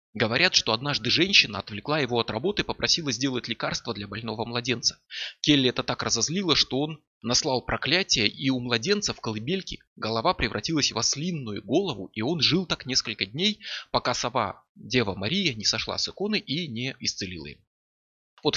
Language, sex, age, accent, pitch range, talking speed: Russian, male, 20-39, native, 110-155 Hz, 170 wpm